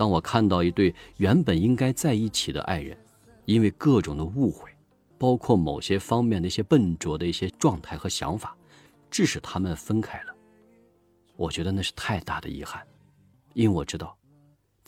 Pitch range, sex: 90-115 Hz, male